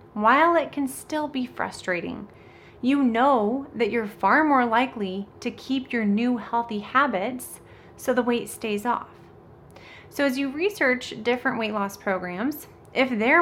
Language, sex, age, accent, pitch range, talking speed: English, female, 30-49, American, 200-250 Hz, 150 wpm